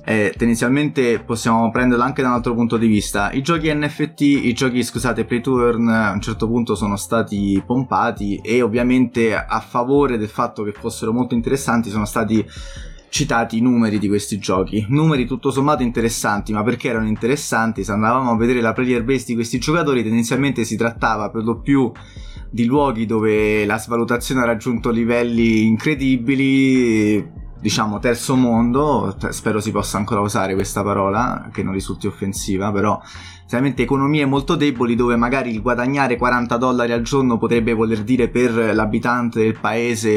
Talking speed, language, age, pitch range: 165 wpm, Italian, 20-39, 105-125 Hz